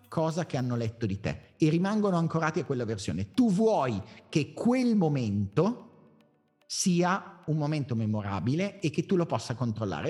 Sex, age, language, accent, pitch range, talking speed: male, 30-49, Italian, native, 140-180 Hz, 160 wpm